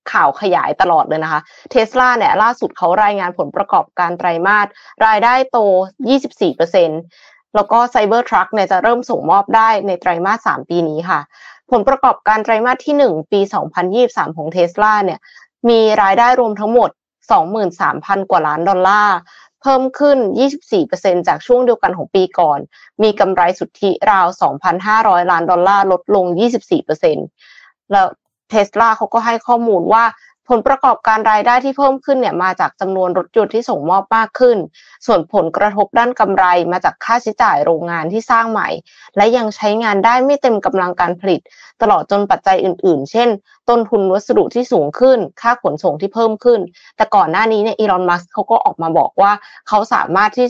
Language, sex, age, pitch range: Thai, female, 20-39, 190-245 Hz